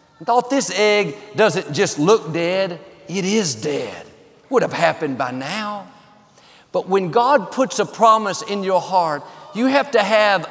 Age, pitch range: 50-69, 170-235 Hz